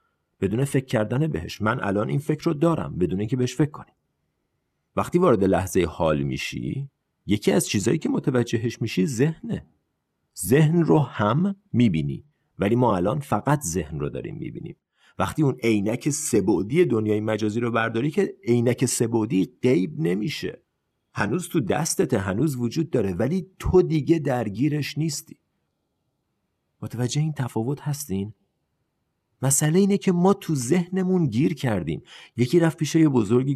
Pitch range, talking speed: 110-155 Hz, 145 wpm